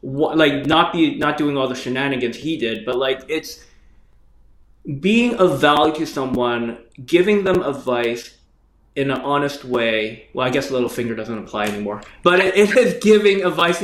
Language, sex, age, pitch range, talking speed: English, male, 20-39, 130-185 Hz, 170 wpm